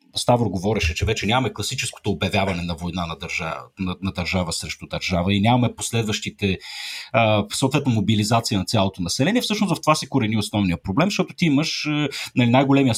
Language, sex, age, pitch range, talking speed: Bulgarian, male, 40-59, 95-135 Hz, 165 wpm